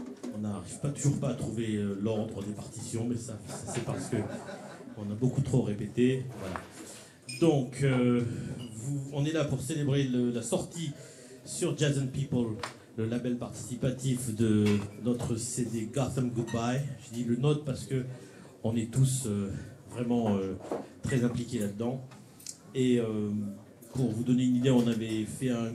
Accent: French